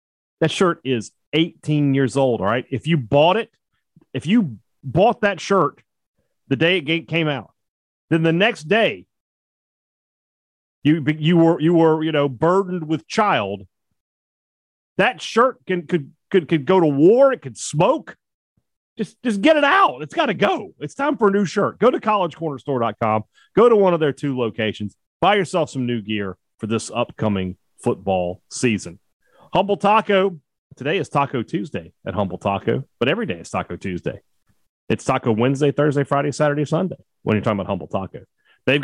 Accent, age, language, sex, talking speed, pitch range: American, 40-59, English, male, 175 wpm, 115-165 Hz